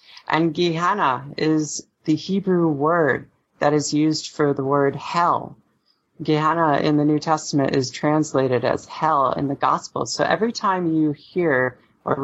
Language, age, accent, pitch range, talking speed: English, 30-49, American, 135-155 Hz, 150 wpm